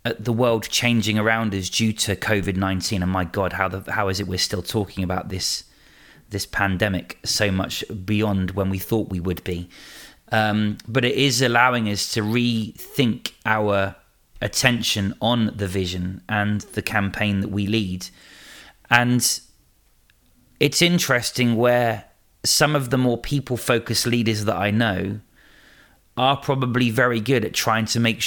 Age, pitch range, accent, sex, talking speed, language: 30-49, 100-120 Hz, British, male, 155 wpm, English